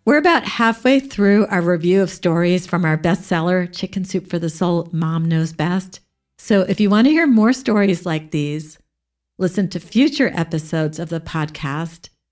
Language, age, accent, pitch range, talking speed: English, 50-69, American, 160-215 Hz, 175 wpm